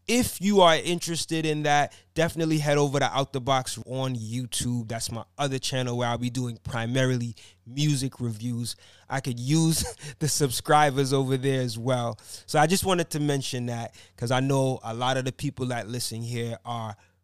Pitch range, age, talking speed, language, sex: 120-155 Hz, 20-39, 190 wpm, English, male